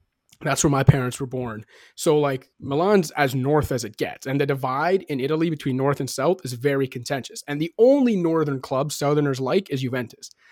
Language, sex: English, male